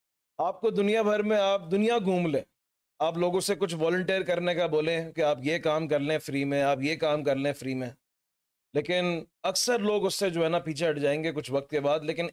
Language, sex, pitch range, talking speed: Urdu, male, 135-175 Hz, 240 wpm